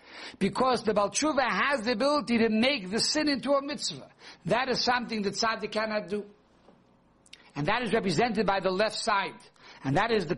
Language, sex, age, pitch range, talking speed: English, male, 60-79, 180-230 Hz, 185 wpm